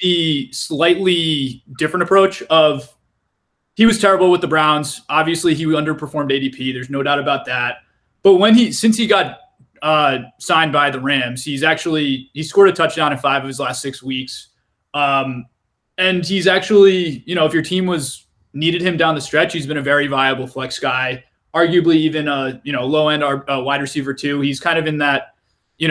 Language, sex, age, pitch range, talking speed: English, male, 20-39, 140-175 Hz, 190 wpm